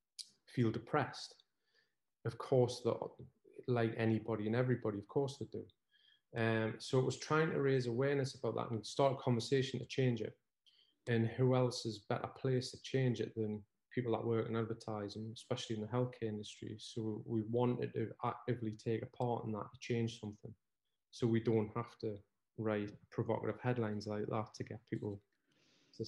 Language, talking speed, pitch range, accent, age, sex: English, 175 wpm, 110-125 Hz, British, 30-49, male